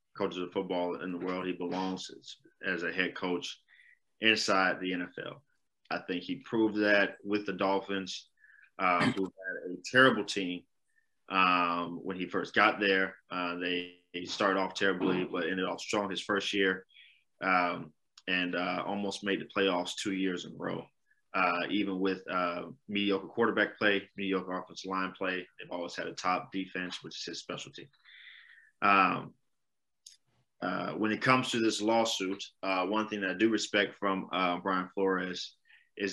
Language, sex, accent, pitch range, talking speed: English, male, American, 90-100 Hz, 170 wpm